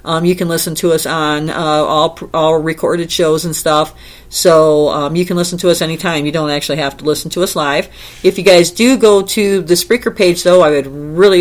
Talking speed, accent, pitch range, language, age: 230 wpm, American, 155-190 Hz, English, 40-59